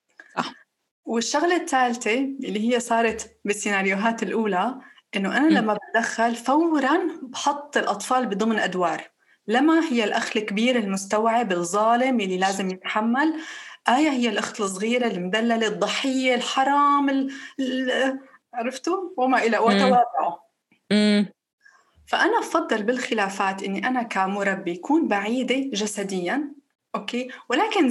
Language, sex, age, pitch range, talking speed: Arabic, female, 20-39, 205-275 Hz, 105 wpm